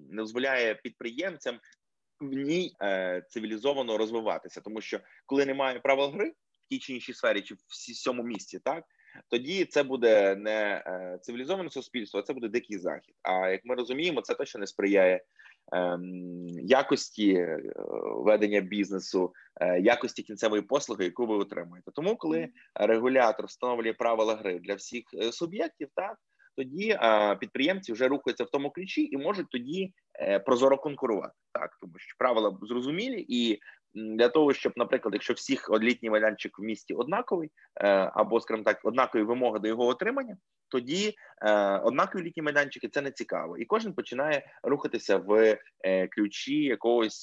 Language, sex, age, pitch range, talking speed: Ukrainian, male, 20-39, 105-145 Hz, 155 wpm